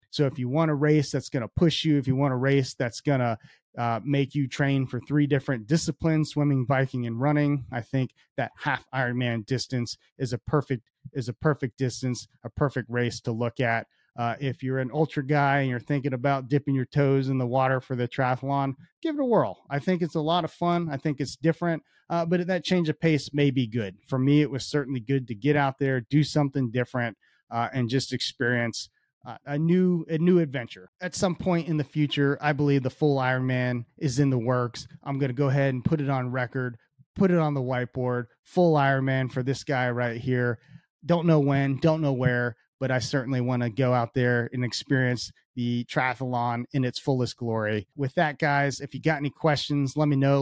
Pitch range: 125-145 Hz